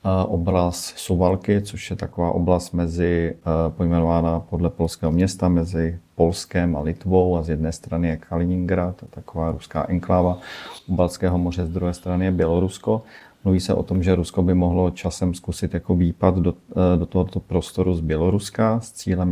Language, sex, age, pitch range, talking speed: Czech, male, 40-59, 85-95 Hz, 165 wpm